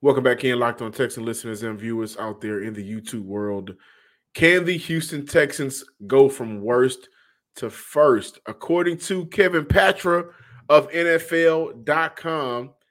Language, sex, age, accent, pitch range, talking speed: English, male, 30-49, American, 115-150 Hz, 140 wpm